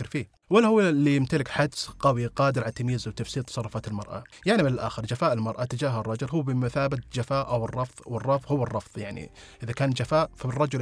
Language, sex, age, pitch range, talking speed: Arabic, male, 30-49, 115-145 Hz, 185 wpm